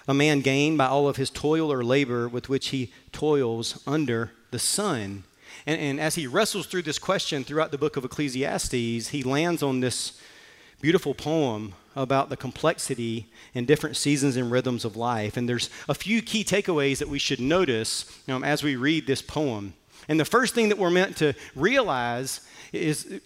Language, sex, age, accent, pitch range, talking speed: English, male, 40-59, American, 130-155 Hz, 185 wpm